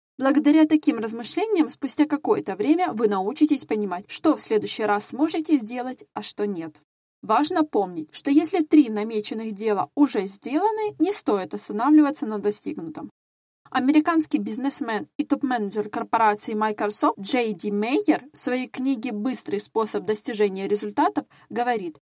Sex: female